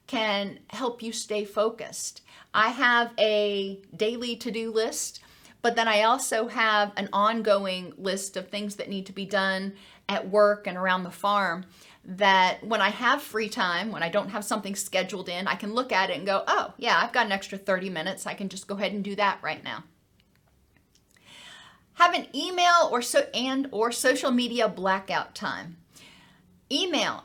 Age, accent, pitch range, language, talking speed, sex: 40-59, American, 195-245 Hz, English, 180 wpm, female